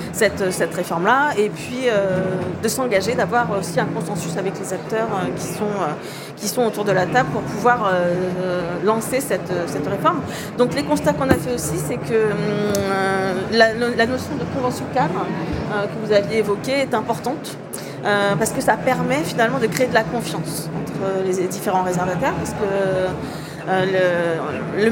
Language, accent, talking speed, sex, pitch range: French, French, 175 wpm, female, 185-225 Hz